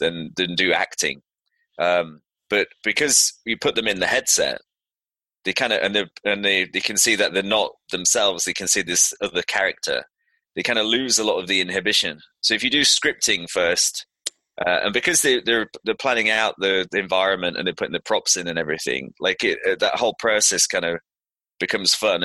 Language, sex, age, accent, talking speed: English, male, 20-39, British, 200 wpm